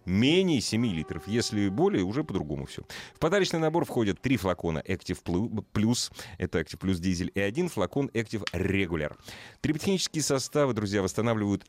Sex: male